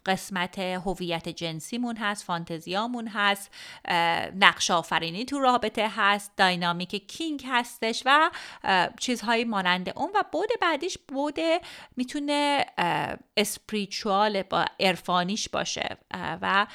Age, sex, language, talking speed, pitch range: 30-49, female, Persian, 105 wpm, 185-275 Hz